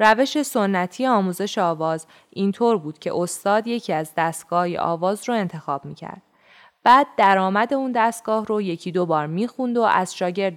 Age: 20-39